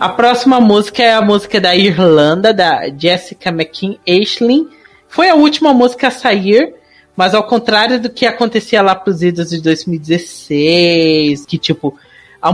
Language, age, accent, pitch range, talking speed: Portuguese, 40-59, Brazilian, 175-235 Hz, 160 wpm